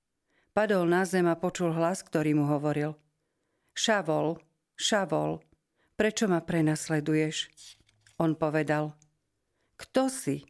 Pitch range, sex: 150-175 Hz, female